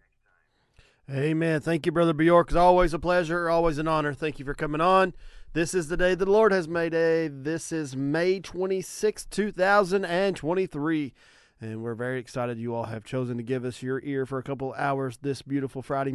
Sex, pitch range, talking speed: male, 130-170 Hz, 215 wpm